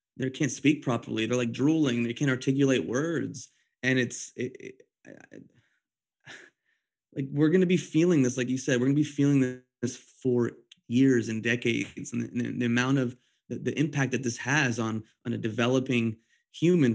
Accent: American